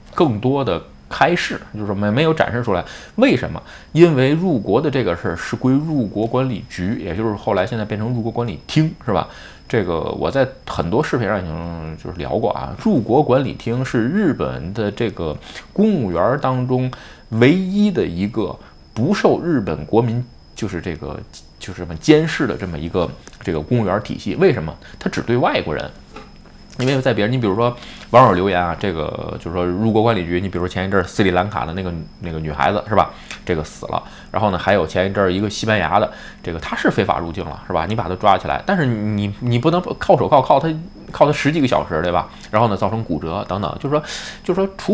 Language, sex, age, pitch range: Chinese, male, 20-39, 90-125 Hz